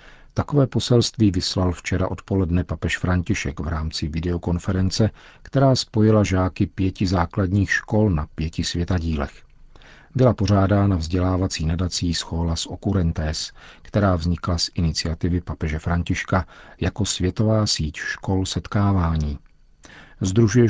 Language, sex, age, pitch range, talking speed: Czech, male, 50-69, 85-100 Hz, 115 wpm